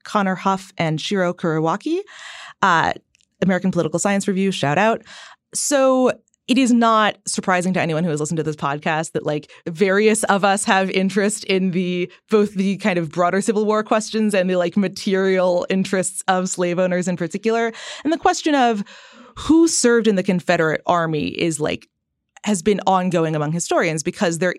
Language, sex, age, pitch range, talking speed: English, female, 20-39, 165-205 Hz, 170 wpm